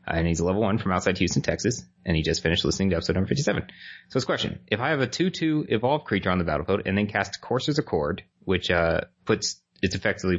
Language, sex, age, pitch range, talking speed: English, male, 30-49, 90-115 Hz, 245 wpm